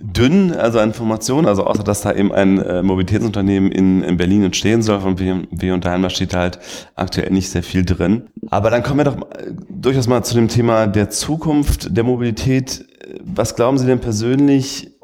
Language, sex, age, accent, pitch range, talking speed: German, male, 30-49, German, 85-105 Hz, 195 wpm